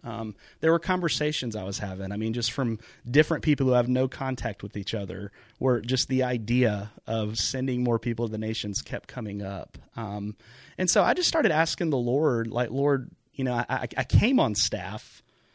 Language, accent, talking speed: English, American, 205 wpm